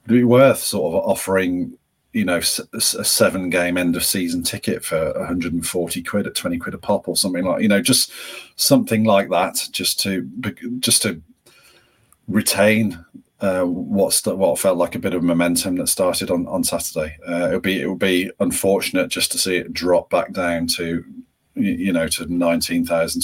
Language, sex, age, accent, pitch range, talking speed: English, male, 40-59, British, 85-120 Hz, 185 wpm